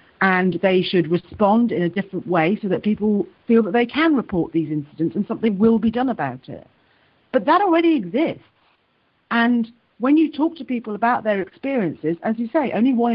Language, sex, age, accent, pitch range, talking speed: English, female, 40-59, British, 175-250 Hz, 195 wpm